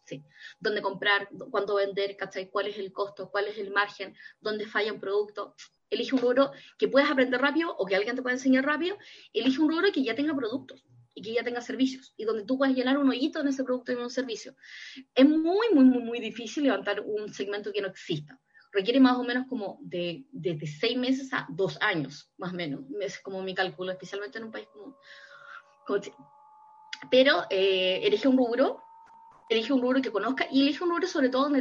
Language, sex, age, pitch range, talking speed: Spanish, female, 20-39, 200-275 Hz, 215 wpm